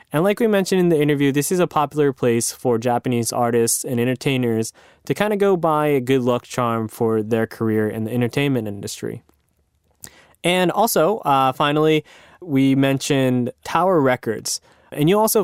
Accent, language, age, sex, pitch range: American, Japanese, 20-39, male, 120-155 Hz